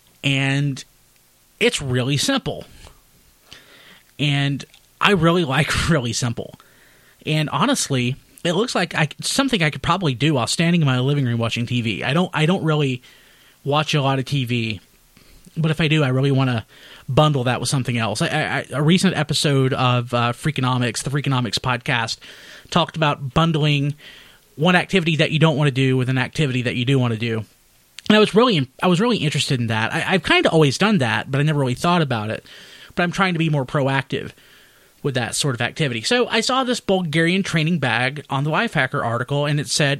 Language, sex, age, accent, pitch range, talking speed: English, male, 30-49, American, 125-165 Hz, 200 wpm